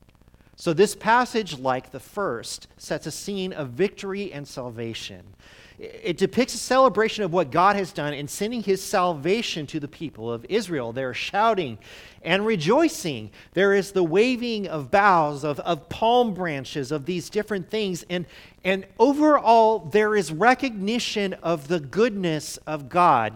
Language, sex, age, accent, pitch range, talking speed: English, male, 40-59, American, 155-220 Hz, 155 wpm